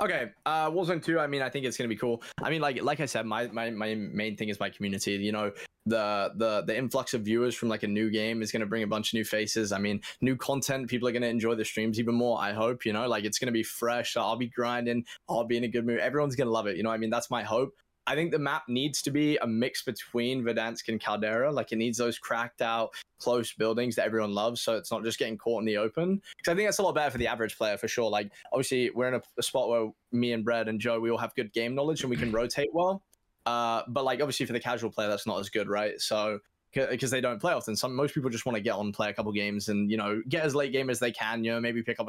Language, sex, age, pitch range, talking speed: English, male, 10-29, 110-140 Hz, 295 wpm